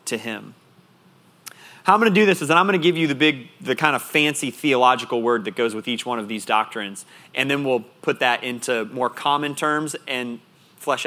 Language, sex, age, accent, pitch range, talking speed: English, male, 30-49, American, 130-170 Hz, 230 wpm